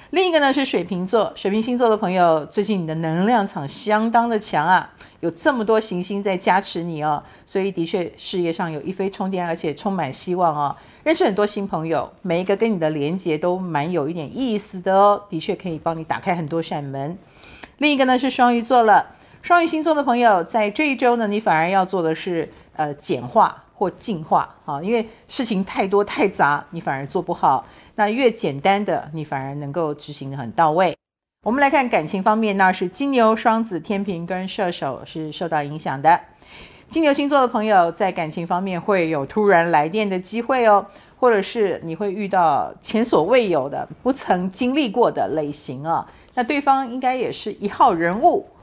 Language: Chinese